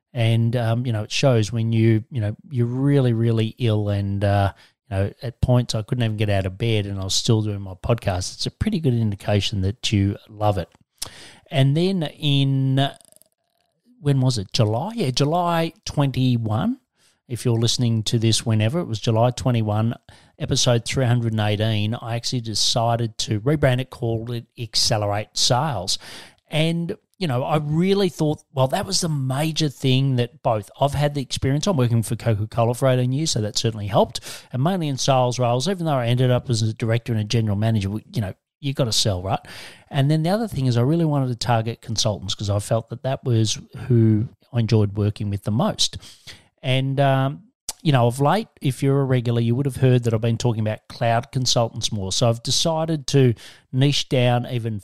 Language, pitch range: English, 110-140 Hz